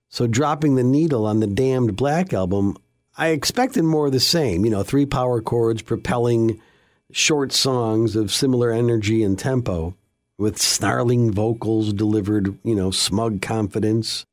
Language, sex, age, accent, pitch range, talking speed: English, male, 50-69, American, 100-135 Hz, 150 wpm